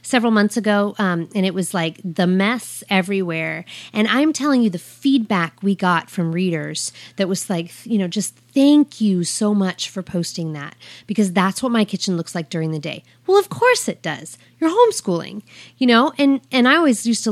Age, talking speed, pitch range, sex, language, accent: 30-49, 205 wpm, 170-225 Hz, female, English, American